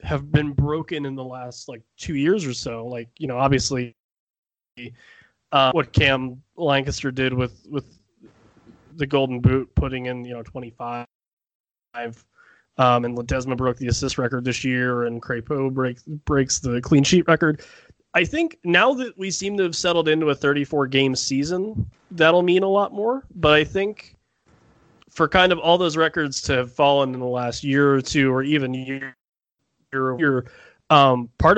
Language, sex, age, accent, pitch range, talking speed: English, male, 20-39, American, 125-155 Hz, 165 wpm